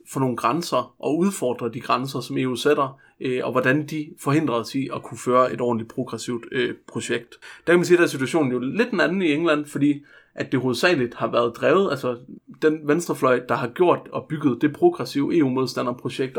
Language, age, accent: Danish, 30-49, native